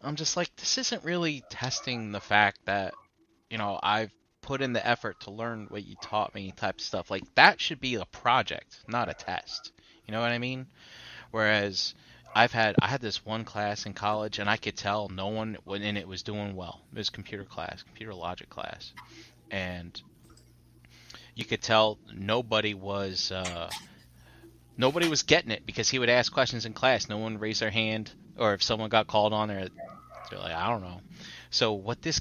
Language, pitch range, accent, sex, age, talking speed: English, 100-125 Hz, American, male, 20-39, 195 wpm